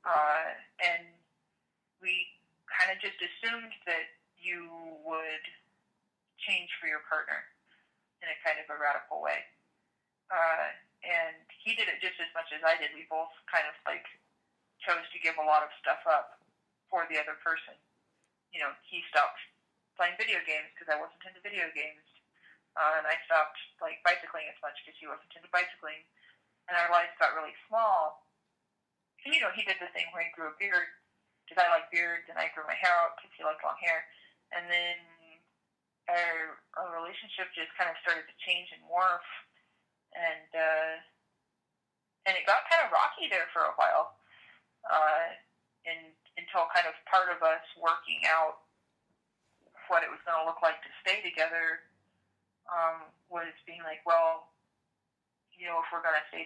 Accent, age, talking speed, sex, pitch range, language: American, 30-49, 175 wpm, female, 160-180 Hz, English